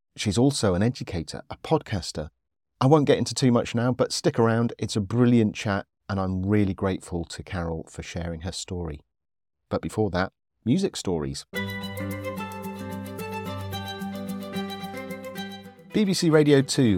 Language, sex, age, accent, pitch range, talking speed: English, male, 40-59, British, 90-120 Hz, 135 wpm